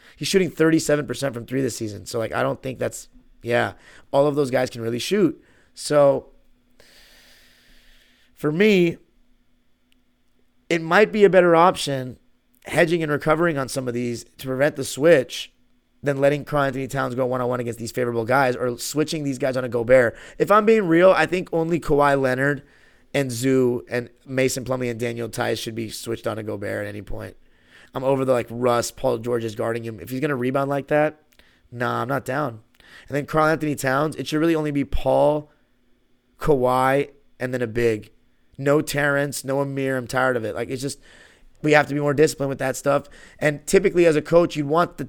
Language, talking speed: English, 200 wpm